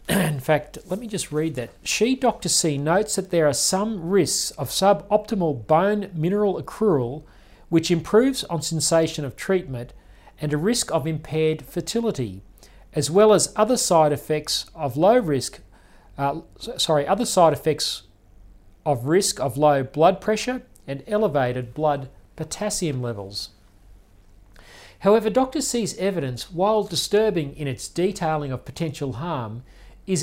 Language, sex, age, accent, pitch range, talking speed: English, male, 40-59, Australian, 135-195 Hz, 140 wpm